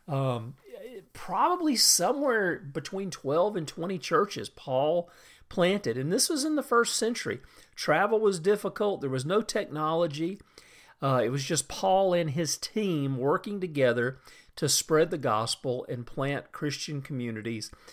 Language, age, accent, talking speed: English, 40-59, American, 140 wpm